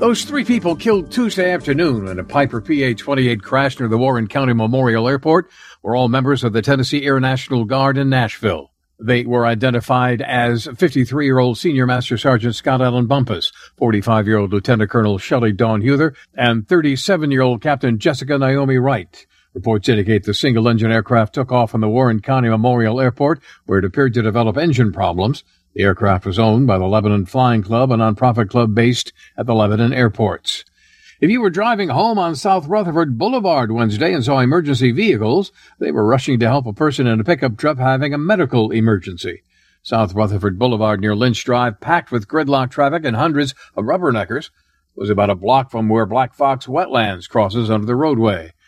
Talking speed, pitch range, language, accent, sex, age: 175 wpm, 110-140 Hz, English, American, male, 60-79